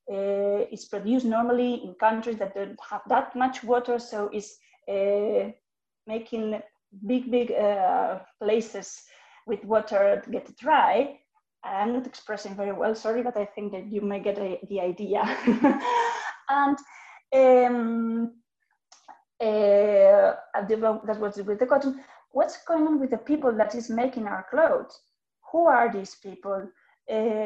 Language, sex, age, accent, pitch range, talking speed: English, female, 20-39, Spanish, 205-270 Hz, 150 wpm